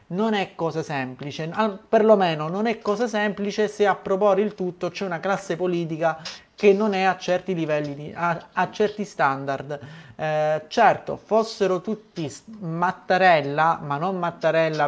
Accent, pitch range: native, 155-200 Hz